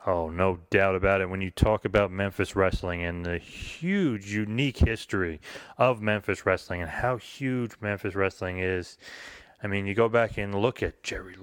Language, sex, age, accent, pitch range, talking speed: English, male, 30-49, American, 90-115 Hz, 180 wpm